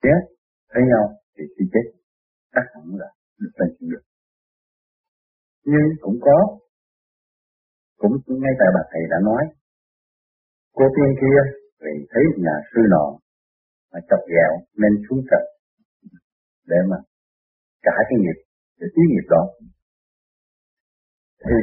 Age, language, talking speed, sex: 50-69, Vietnamese, 130 wpm, male